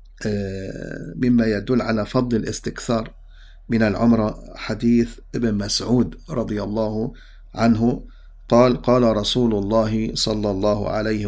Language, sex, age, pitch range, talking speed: English, male, 50-69, 110-130 Hz, 105 wpm